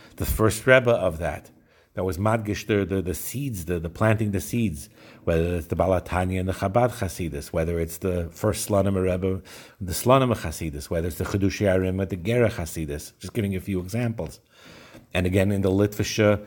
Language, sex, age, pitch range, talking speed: English, male, 50-69, 90-110 Hz, 195 wpm